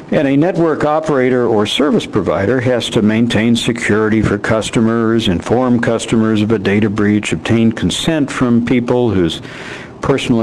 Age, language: 60-79, English